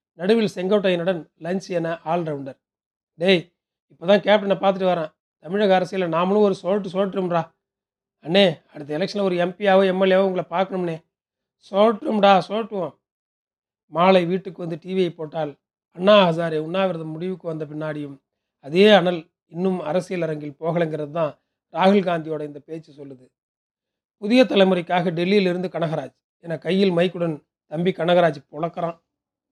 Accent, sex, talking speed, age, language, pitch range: native, male, 115 wpm, 40-59, Tamil, 160-195 Hz